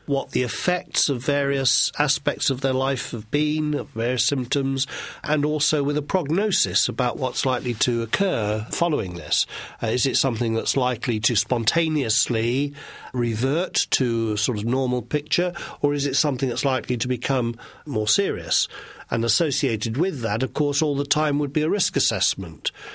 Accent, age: British, 50-69